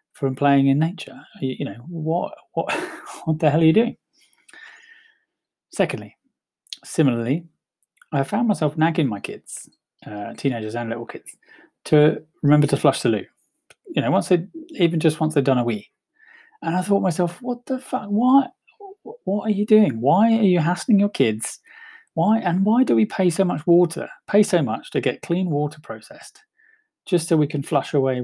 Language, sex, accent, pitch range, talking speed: English, male, British, 125-190 Hz, 185 wpm